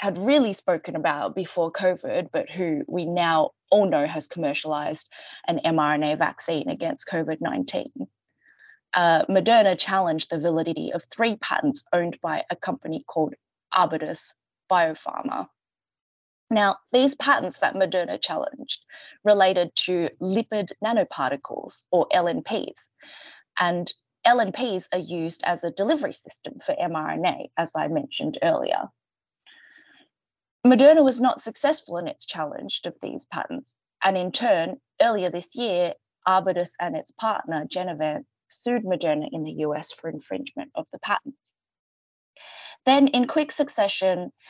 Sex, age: female, 20-39